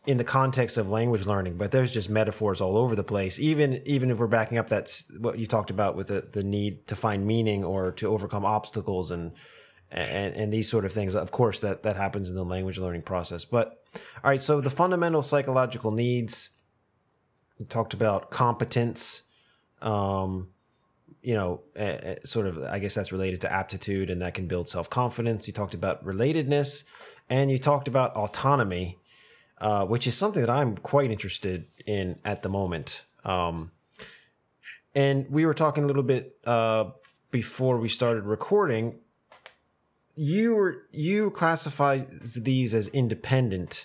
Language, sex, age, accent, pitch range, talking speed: English, male, 30-49, American, 100-130 Hz, 165 wpm